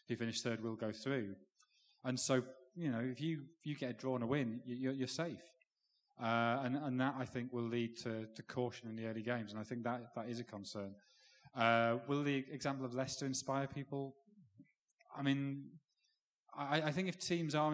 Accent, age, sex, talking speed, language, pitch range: British, 30-49, male, 205 wpm, English, 110-130 Hz